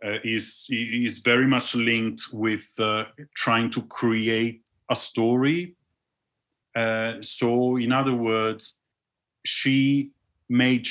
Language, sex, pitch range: English, male, 110-130 Hz